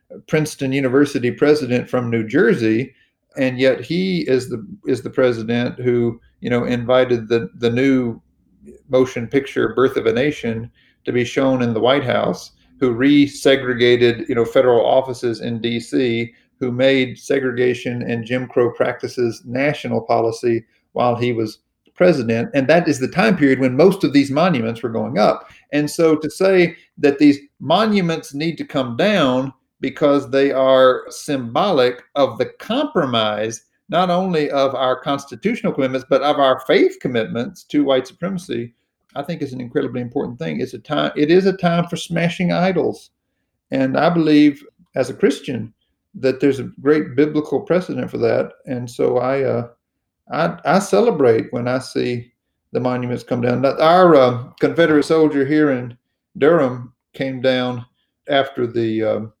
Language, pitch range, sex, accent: English, 120-150 Hz, male, American